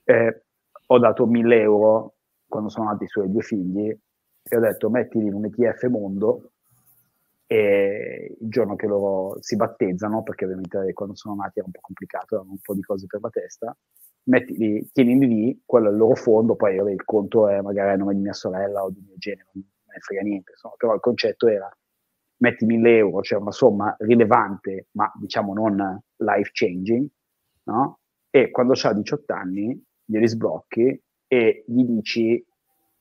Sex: male